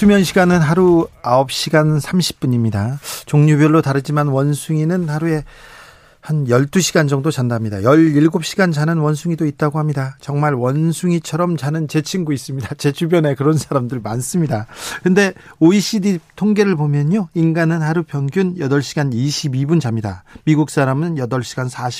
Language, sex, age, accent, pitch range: Korean, male, 40-59, native, 135-175 Hz